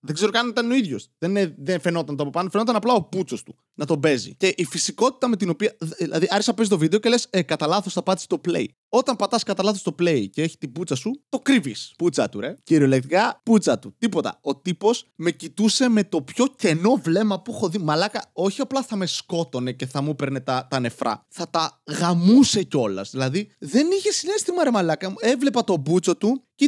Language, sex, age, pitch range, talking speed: Greek, male, 20-39, 150-245 Hz, 225 wpm